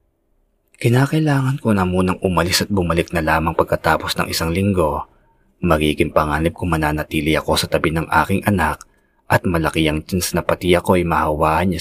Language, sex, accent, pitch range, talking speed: Filipino, male, native, 75-90 Hz, 165 wpm